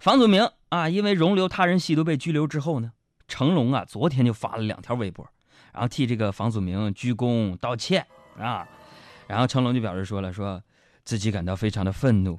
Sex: male